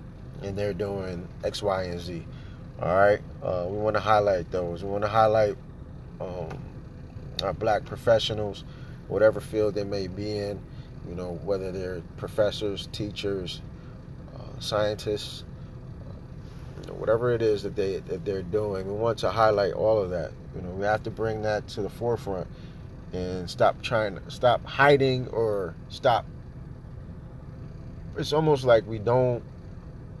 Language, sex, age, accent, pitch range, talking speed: English, male, 30-49, American, 100-120 Hz, 150 wpm